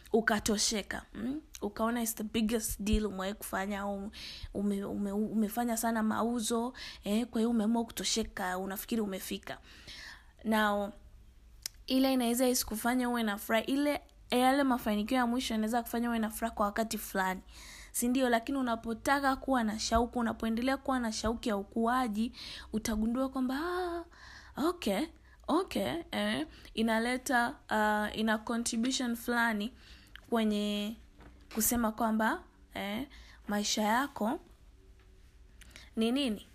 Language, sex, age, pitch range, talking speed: Swahili, female, 20-39, 205-245 Hz, 120 wpm